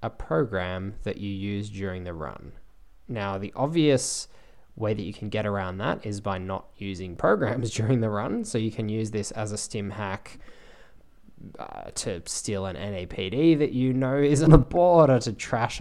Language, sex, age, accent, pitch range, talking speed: English, male, 10-29, Australian, 100-130 Hz, 190 wpm